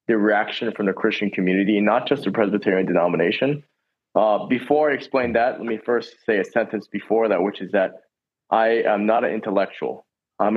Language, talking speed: English, 185 wpm